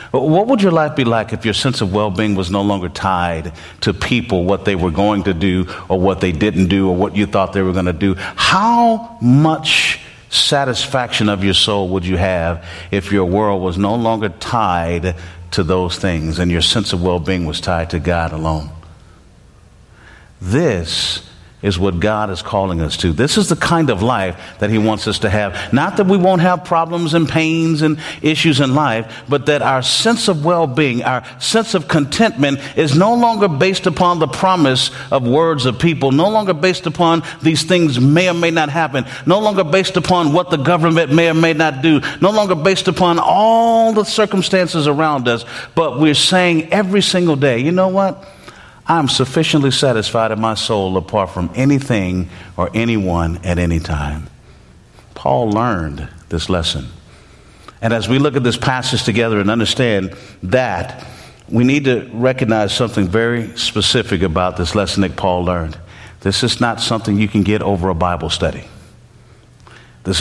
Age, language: 50-69, English